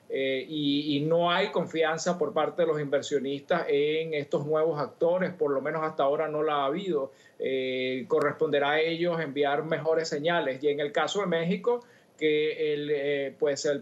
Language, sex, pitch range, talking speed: English, male, 145-170 Hz, 175 wpm